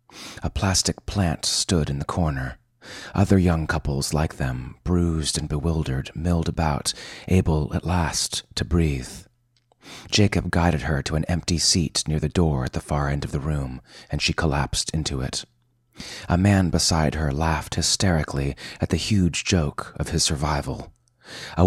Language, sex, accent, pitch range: English, male, American, 75-95 Hz